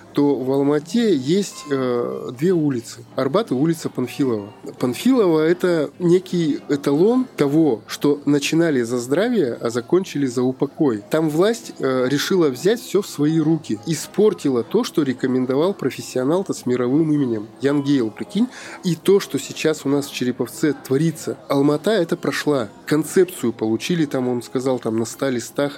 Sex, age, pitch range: male, 20-39, 125-160 Hz